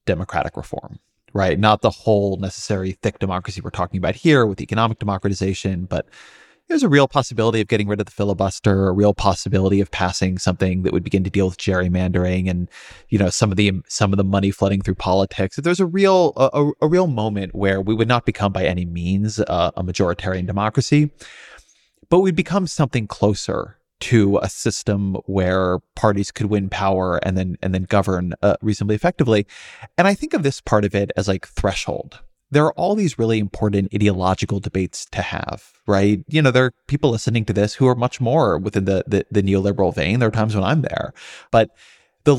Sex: male